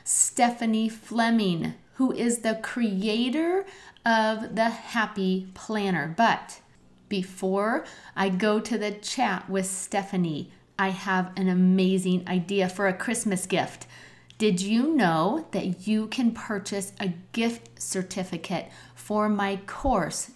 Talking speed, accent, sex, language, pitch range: 120 wpm, American, female, English, 195-250 Hz